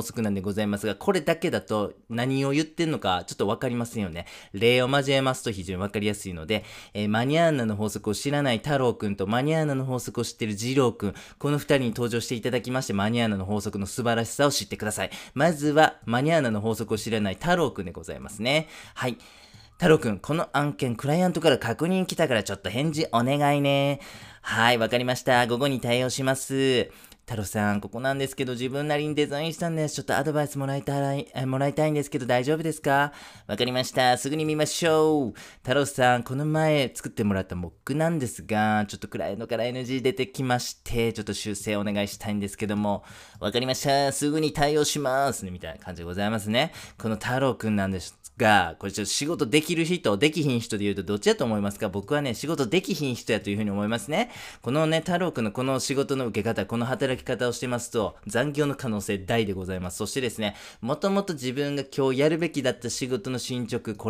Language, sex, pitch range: Japanese, male, 105-145 Hz